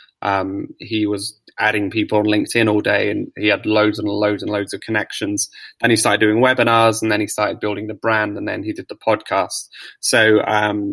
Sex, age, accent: male, 20-39, British